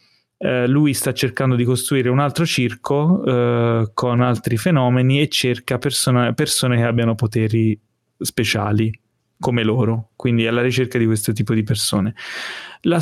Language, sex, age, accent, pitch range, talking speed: Italian, male, 30-49, native, 115-135 Hz, 150 wpm